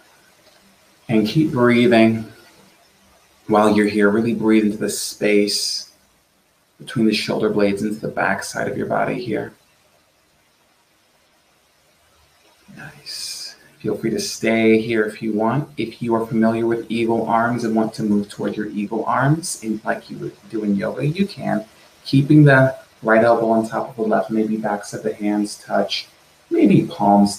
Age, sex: 30-49, male